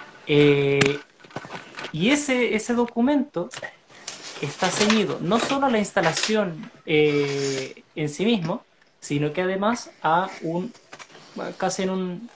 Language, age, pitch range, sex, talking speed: Spanish, 30-49, 165-220 Hz, male, 115 wpm